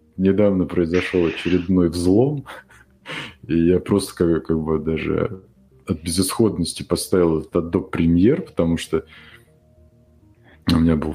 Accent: native